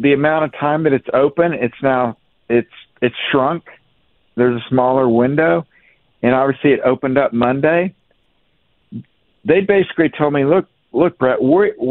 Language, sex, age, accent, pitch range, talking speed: English, male, 60-79, American, 130-160 Hz, 150 wpm